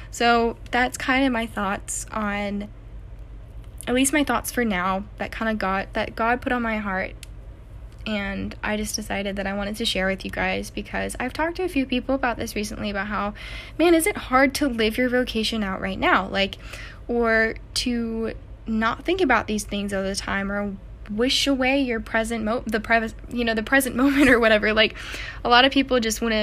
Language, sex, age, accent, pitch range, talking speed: English, female, 10-29, American, 200-250 Hz, 200 wpm